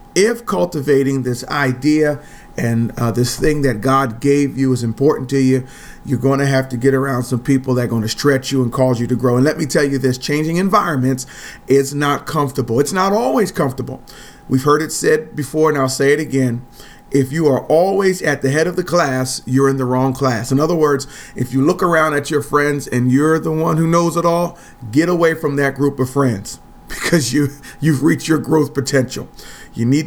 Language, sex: English, male